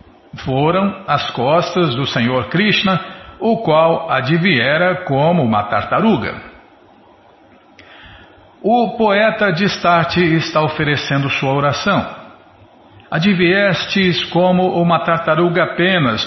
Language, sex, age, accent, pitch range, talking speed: Portuguese, male, 60-79, Brazilian, 130-175 Hz, 90 wpm